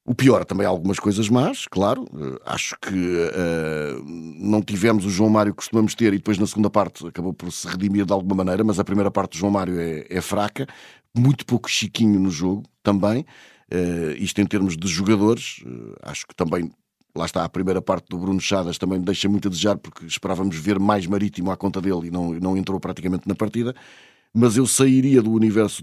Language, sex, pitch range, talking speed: Portuguese, male, 95-115 Hz, 210 wpm